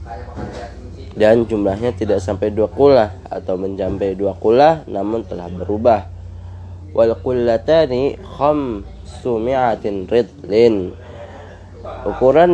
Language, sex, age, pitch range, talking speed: Arabic, male, 20-39, 95-120 Hz, 95 wpm